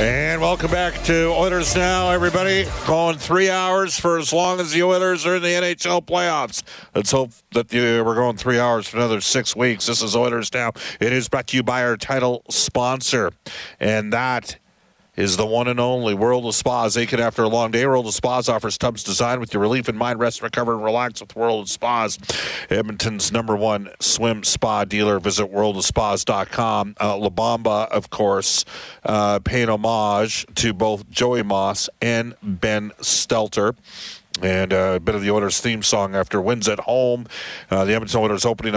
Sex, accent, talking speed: male, American, 185 wpm